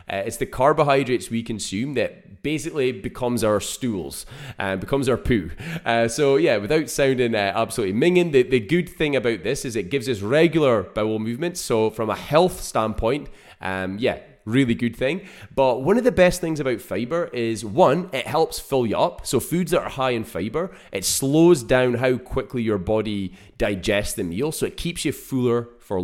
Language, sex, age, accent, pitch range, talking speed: English, male, 20-39, British, 110-145 Hz, 195 wpm